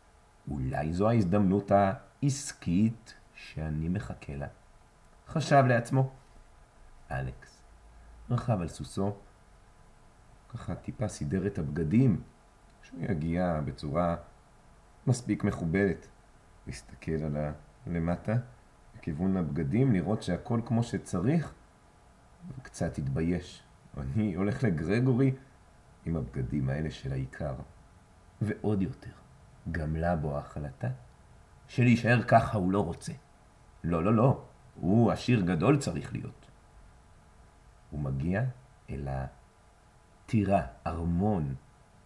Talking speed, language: 95 wpm, Hebrew